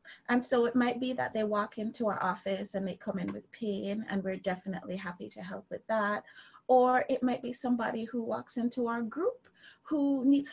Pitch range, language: 170-250 Hz, English